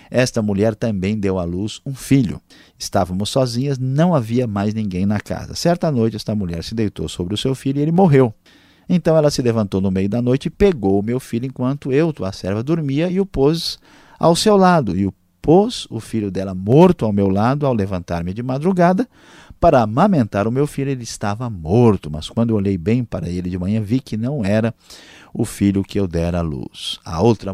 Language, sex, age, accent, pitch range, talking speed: Portuguese, male, 50-69, Brazilian, 100-135 Hz, 210 wpm